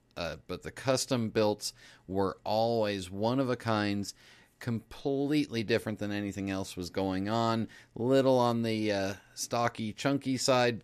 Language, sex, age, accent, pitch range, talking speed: English, male, 40-59, American, 110-130 Hz, 125 wpm